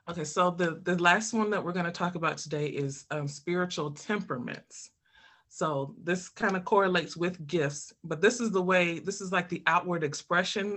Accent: American